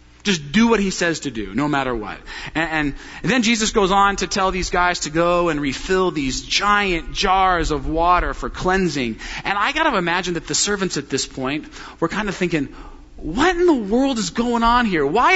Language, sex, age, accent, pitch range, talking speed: English, male, 40-59, American, 165-275 Hz, 215 wpm